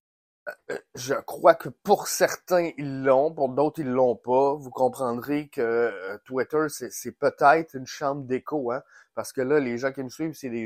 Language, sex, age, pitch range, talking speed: French, male, 20-39, 120-155 Hz, 185 wpm